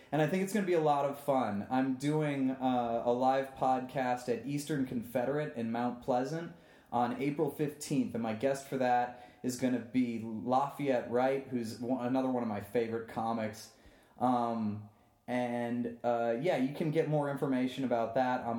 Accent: American